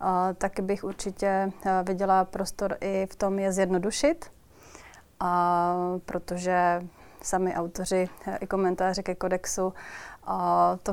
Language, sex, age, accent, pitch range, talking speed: Czech, female, 30-49, native, 185-210 Hz, 125 wpm